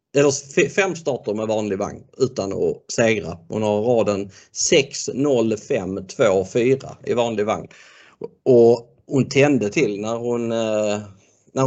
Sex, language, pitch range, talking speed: male, Swedish, 105-125 Hz, 125 wpm